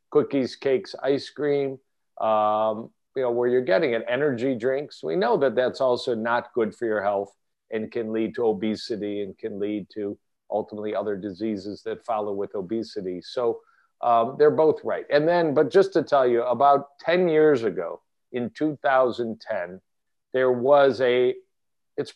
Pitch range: 110-140 Hz